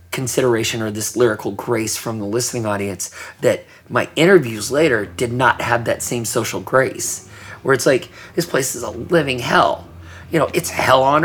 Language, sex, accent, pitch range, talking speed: English, male, American, 90-120 Hz, 180 wpm